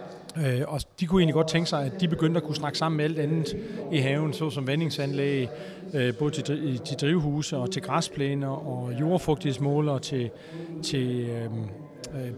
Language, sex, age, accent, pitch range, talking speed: Danish, male, 30-49, native, 135-165 Hz, 165 wpm